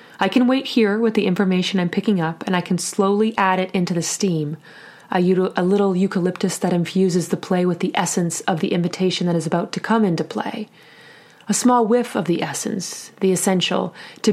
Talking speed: 205 wpm